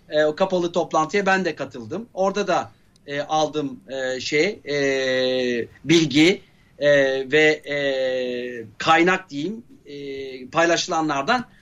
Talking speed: 70 wpm